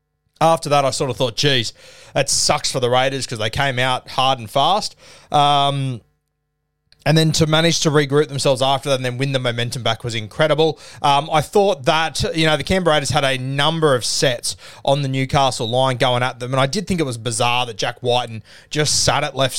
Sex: male